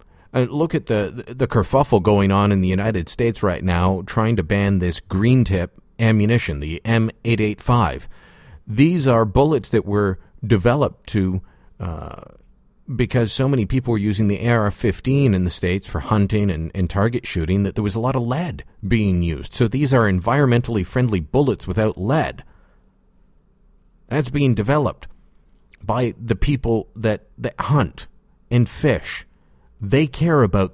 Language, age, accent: English, 40-59, American